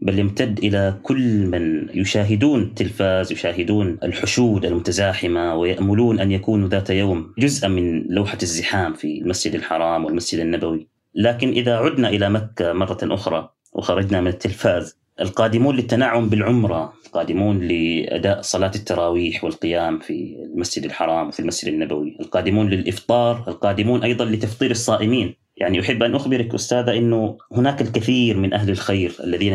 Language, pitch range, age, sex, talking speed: Arabic, 90-120 Hz, 30-49, male, 135 wpm